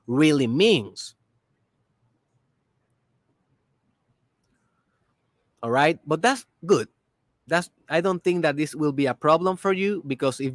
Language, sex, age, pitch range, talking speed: Spanish, male, 30-49, 130-185 Hz, 120 wpm